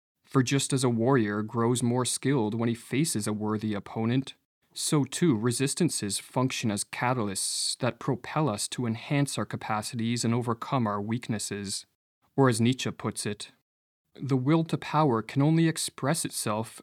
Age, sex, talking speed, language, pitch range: 30-49, male, 155 wpm, English, 110-145 Hz